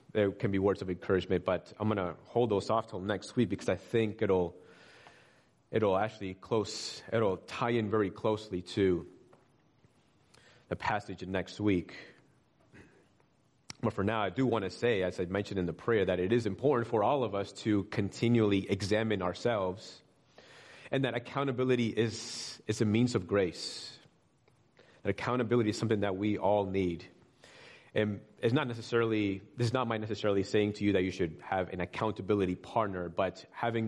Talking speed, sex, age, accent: 175 wpm, male, 30-49, American